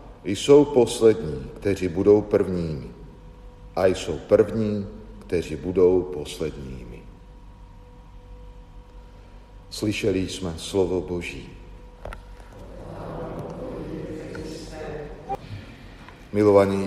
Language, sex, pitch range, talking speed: Slovak, male, 85-100 Hz, 55 wpm